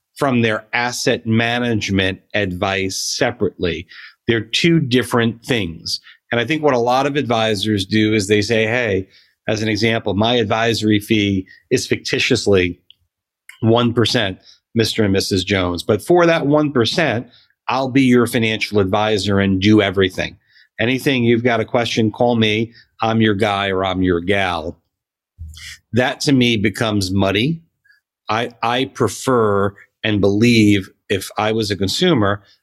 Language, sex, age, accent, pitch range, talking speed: English, male, 40-59, American, 105-130 Hz, 140 wpm